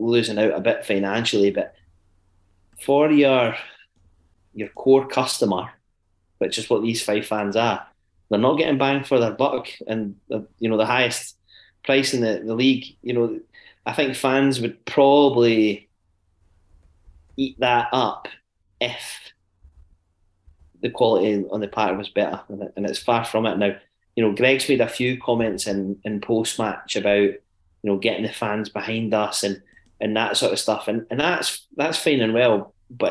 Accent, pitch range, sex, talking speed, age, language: British, 95-115 Hz, male, 165 wpm, 30-49, English